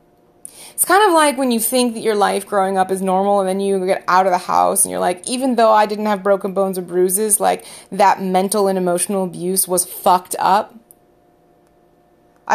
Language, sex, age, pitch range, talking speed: English, female, 30-49, 180-220 Hz, 210 wpm